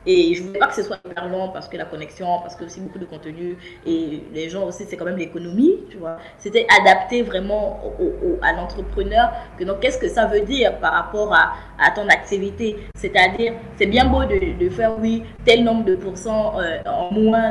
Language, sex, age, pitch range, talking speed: French, female, 20-39, 185-240 Hz, 215 wpm